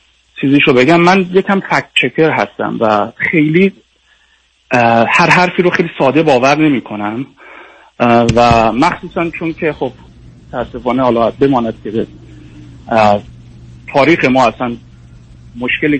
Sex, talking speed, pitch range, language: male, 110 wpm, 130-180 Hz, Persian